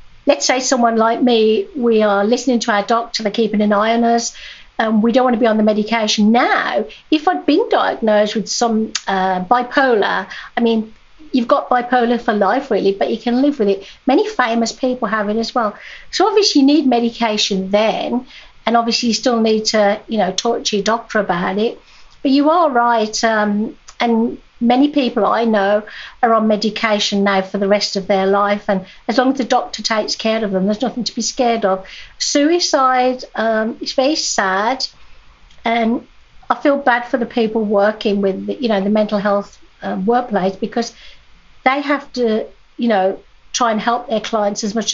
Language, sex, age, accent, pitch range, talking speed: English, female, 50-69, British, 210-255 Hz, 195 wpm